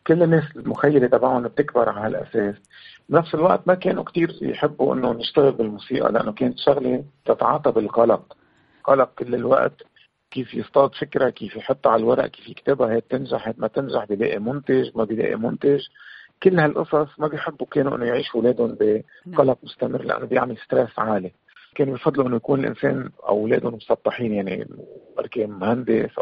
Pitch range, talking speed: 115-180 Hz, 150 wpm